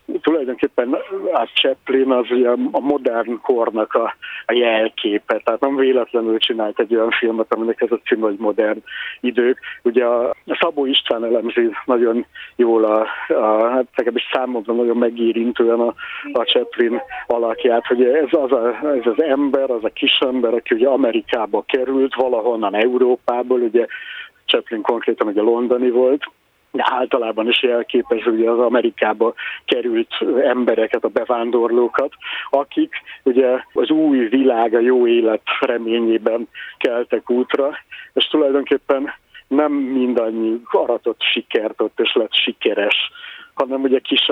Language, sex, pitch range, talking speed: Hungarian, male, 115-140 Hz, 125 wpm